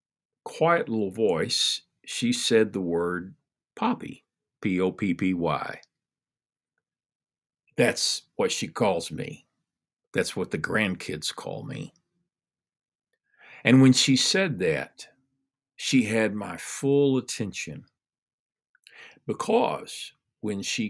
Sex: male